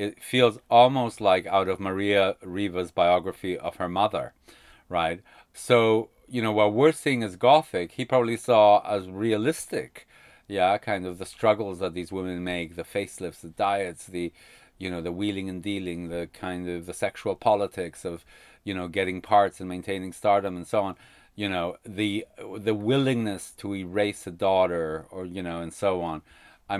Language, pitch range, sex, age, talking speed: English, 90-110 Hz, male, 40-59, 175 wpm